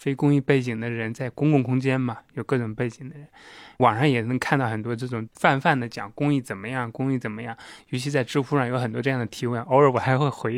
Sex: male